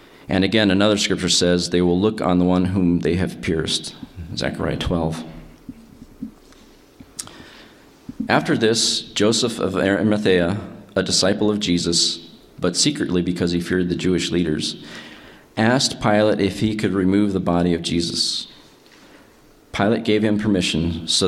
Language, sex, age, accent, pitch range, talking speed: English, male, 40-59, American, 85-100 Hz, 140 wpm